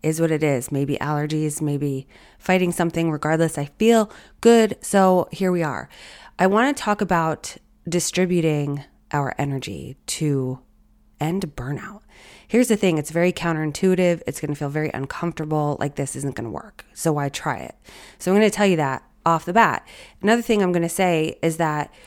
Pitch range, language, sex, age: 155-185 Hz, English, female, 20-39